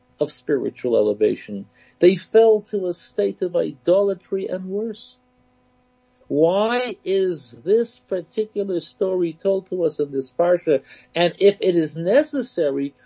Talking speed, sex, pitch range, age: 130 wpm, male, 125-205 Hz, 60-79